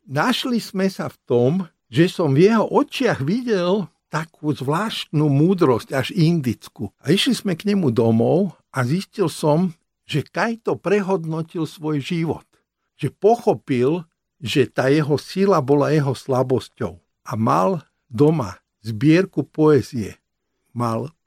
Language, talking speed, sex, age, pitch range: Slovak, 125 wpm, male, 60-79, 120-170 Hz